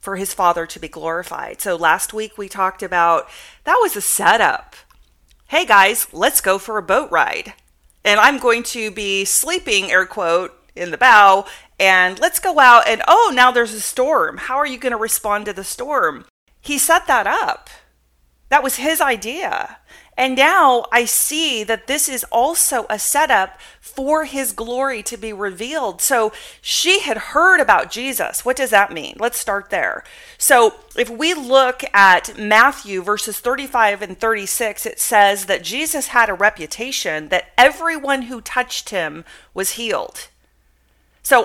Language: English